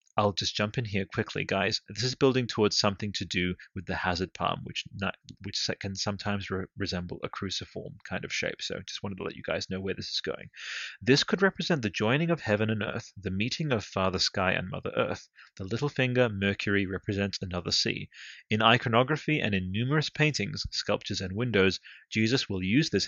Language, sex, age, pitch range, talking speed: English, male, 30-49, 95-125 Hz, 210 wpm